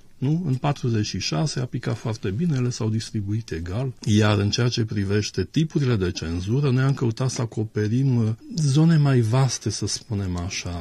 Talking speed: 160 wpm